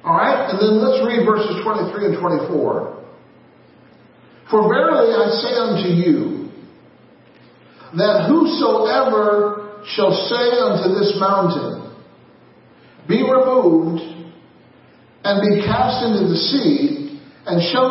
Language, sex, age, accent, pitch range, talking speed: English, male, 50-69, American, 195-260 Hz, 110 wpm